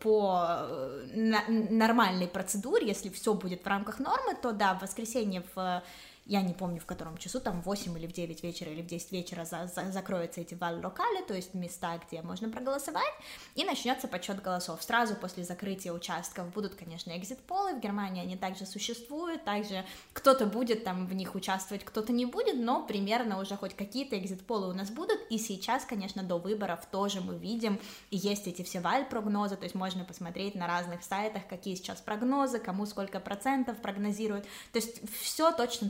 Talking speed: 180 wpm